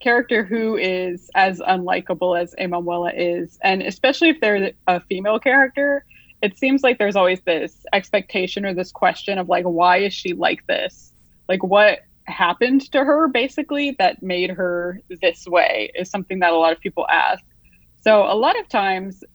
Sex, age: female, 20-39